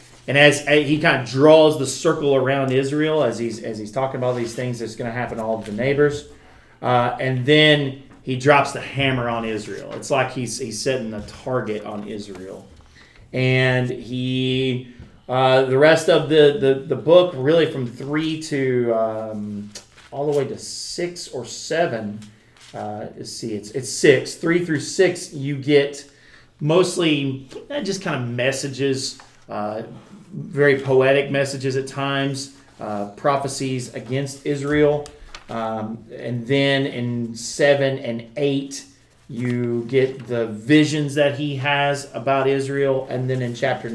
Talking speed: 155 wpm